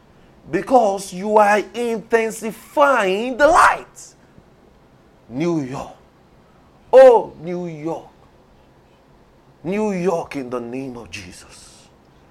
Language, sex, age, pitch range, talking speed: English, male, 30-49, 135-185 Hz, 90 wpm